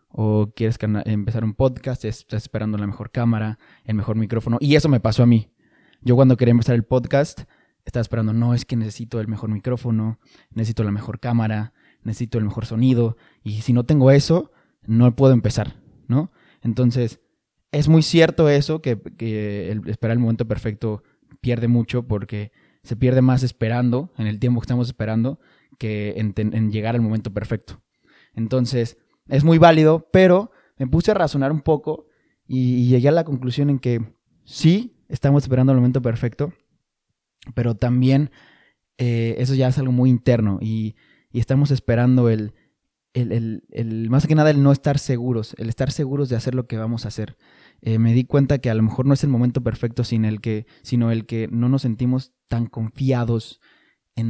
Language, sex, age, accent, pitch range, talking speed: Spanish, male, 20-39, Mexican, 110-135 Hz, 180 wpm